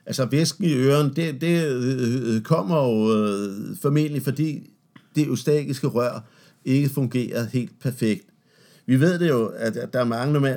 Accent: native